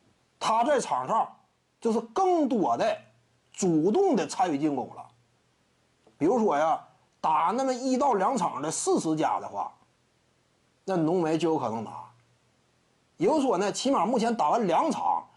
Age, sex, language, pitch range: 30-49, male, Chinese, 190-275 Hz